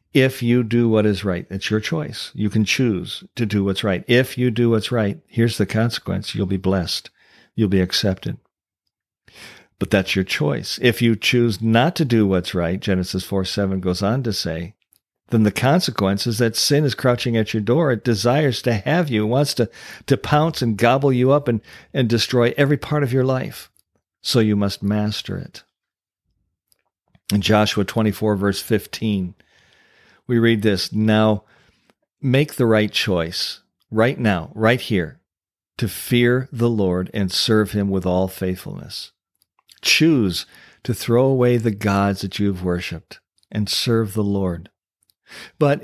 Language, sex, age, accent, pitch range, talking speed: English, male, 50-69, American, 100-125 Hz, 170 wpm